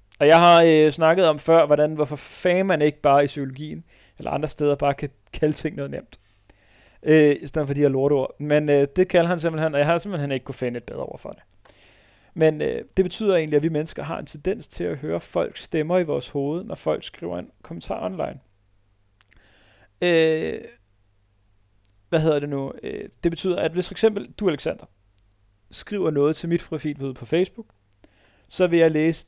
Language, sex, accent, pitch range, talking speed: Danish, male, native, 100-165 Hz, 205 wpm